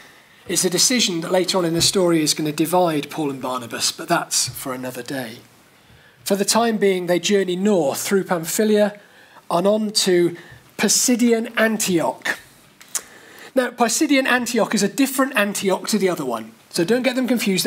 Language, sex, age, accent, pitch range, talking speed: English, male, 40-59, British, 170-210 Hz, 175 wpm